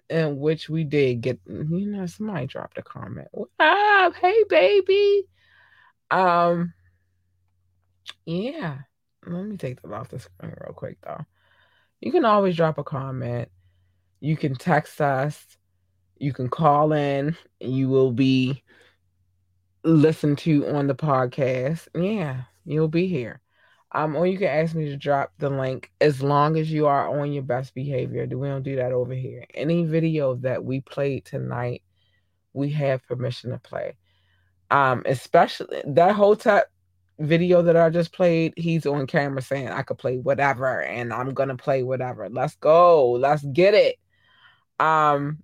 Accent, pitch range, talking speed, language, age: American, 125-160 Hz, 155 wpm, English, 20-39